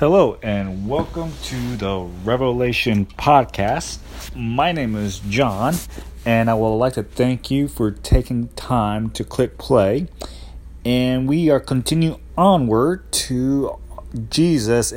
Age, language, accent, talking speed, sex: 30-49, English, American, 125 wpm, male